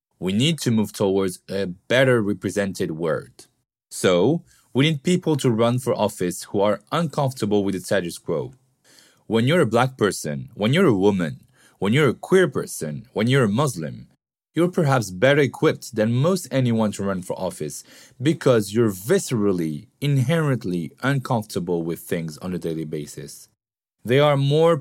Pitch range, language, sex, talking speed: 100-135 Hz, French, male, 160 wpm